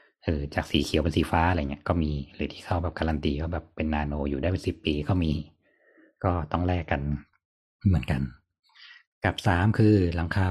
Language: Thai